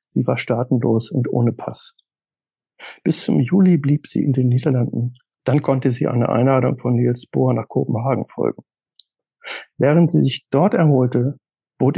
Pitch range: 120-150 Hz